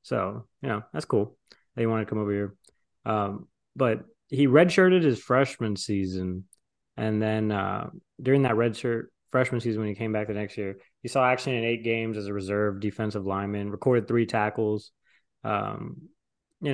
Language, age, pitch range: English, 20-39, 110-135 Hz